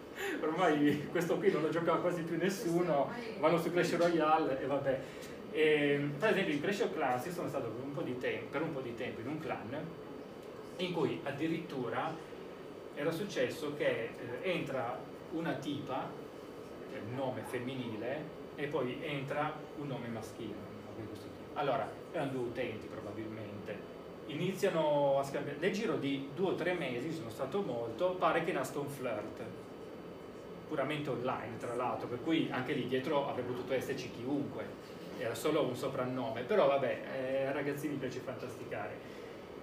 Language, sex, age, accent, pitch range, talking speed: Italian, male, 30-49, native, 130-165 Hz, 150 wpm